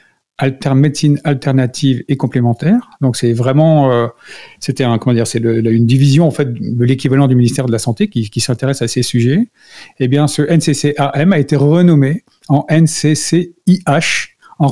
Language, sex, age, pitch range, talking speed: French, male, 50-69, 125-160 Hz, 165 wpm